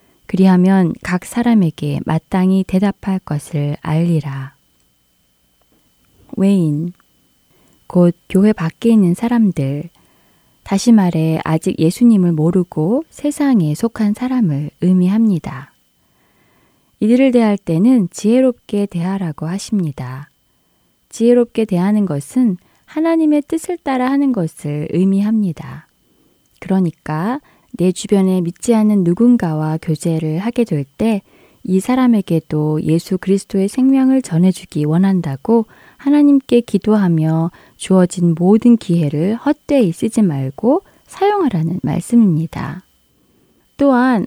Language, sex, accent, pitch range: Korean, female, native, 160-235 Hz